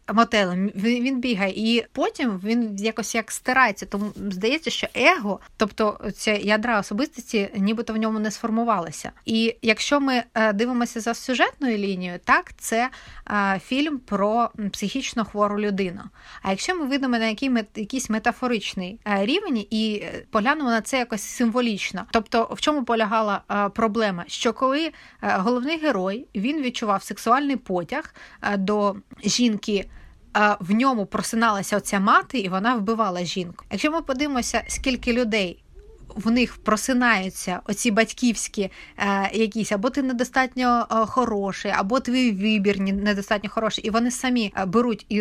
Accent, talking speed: native, 130 wpm